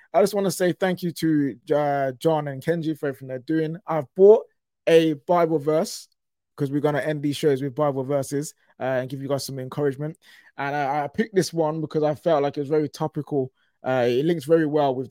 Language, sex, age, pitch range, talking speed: English, male, 20-39, 130-165 Hz, 230 wpm